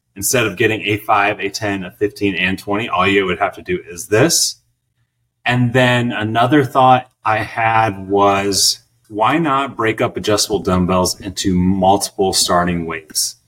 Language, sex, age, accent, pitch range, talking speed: English, male, 30-49, American, 100-120 Hz, 160 wpm